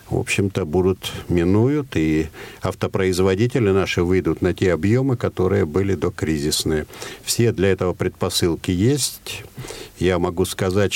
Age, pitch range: 60-79, 95-115 Hz